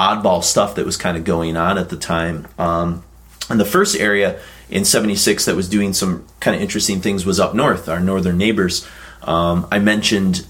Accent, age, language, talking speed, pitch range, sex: American, 30-49, English, 200 wpm, 85-95 Hz, male